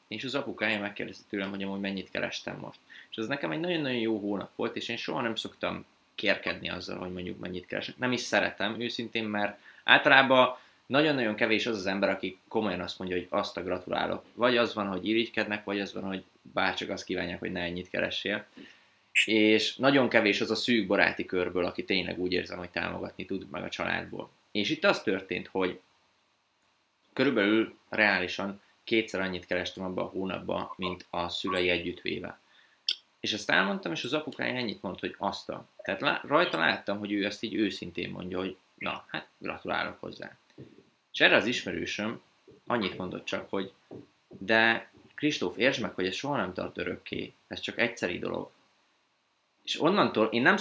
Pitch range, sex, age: 90-115 Hz, male, 20-39